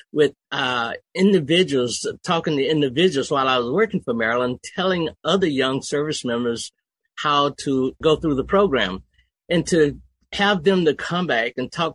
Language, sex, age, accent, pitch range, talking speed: English, male, 60-79, American, 135-175 Hz, 160 wpm